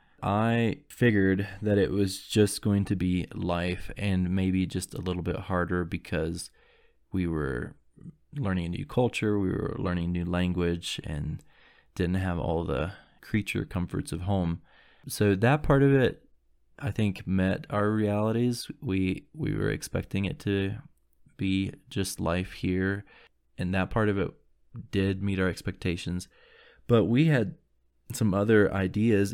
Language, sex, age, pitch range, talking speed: English, male, 20-39, 90-105 Hz, 150 wpm